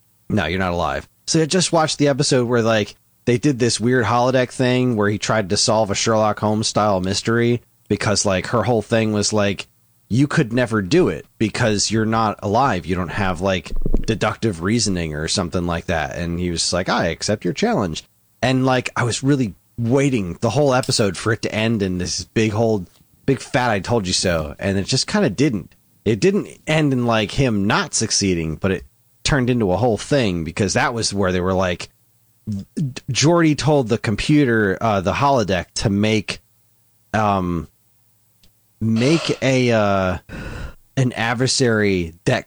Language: English